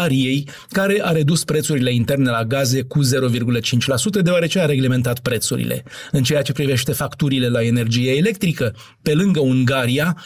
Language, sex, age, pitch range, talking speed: Romanian, male, 40-59, 125-155 Hz, 140 wpm